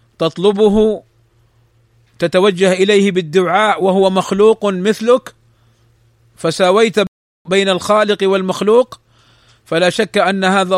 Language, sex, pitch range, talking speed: Arabic, male, 130-195 Hz, 85 wpm